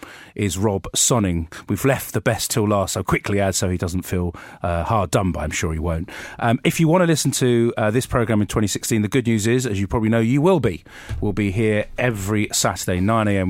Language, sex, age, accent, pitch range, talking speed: English, male, 30-49, British, 95-115 Hz, 240 wpm